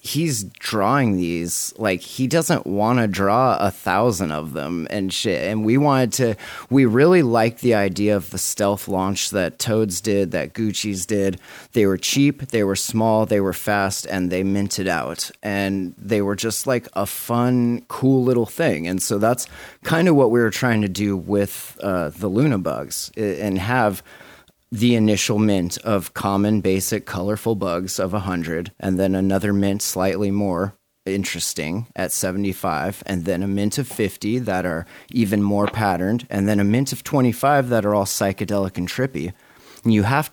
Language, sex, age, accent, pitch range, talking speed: English, male, 30-49, American, 95-115 Hz, 175 wpm